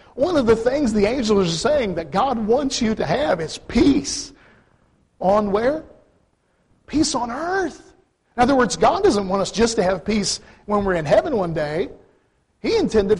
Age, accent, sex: 40-59, American, male